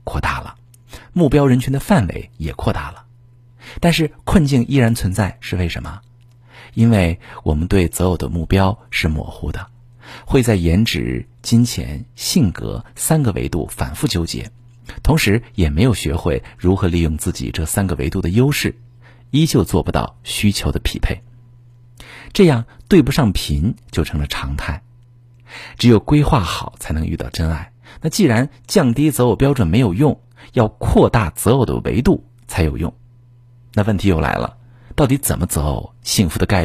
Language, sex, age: Chinese, male, 50-69